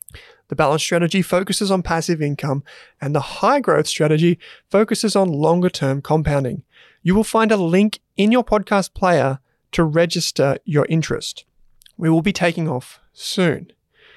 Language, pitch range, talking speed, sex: English, 150-195 Hz, 155 wpm, male